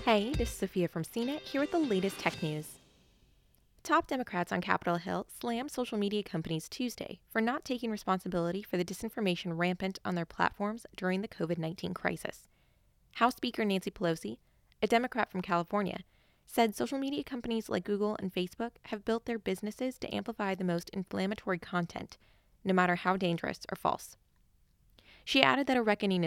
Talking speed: 170 wpm